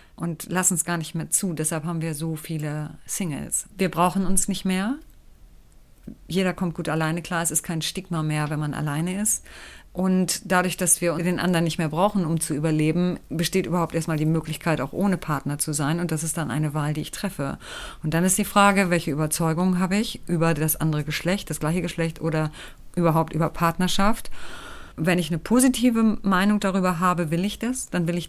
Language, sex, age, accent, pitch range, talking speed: German, female, 30-49, German, 155-185 Hz, 205 wpm